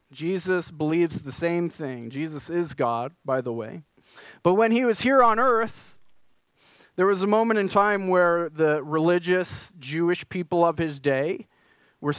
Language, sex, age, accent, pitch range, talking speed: English, male, 30-49, American, 145-185 Hz, 160 wpm